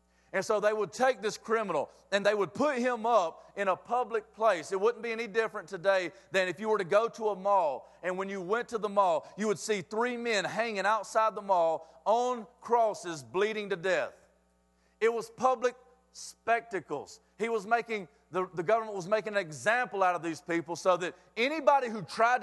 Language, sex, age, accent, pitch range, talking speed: English, male, 40-59, American, 165-225 Hz, 205 wpm